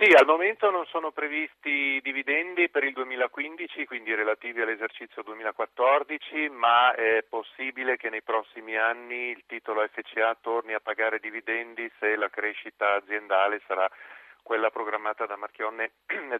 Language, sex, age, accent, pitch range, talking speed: Italian, male, 40-59, native, 110-140 Hz, 140 wpm